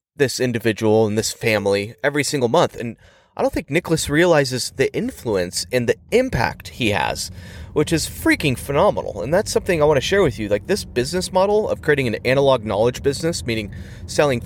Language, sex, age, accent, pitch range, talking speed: English, male, 30-49, American, 100-145 Hz, 190 wpm